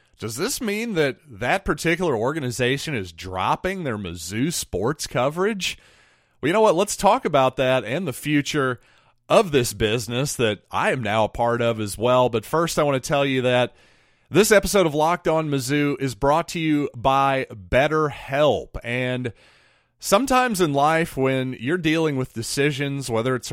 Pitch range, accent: 115-145 Hz, American